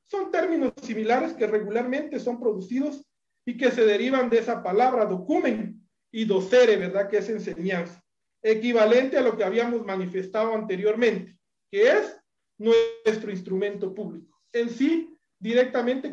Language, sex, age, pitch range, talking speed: Spanish, male, 40-59, 205-260 Hz, 135 wpm